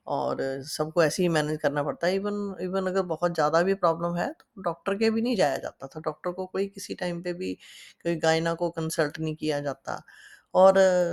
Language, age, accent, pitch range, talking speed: Hindi, 20-39, native, 165-195 Hz, 215 wpm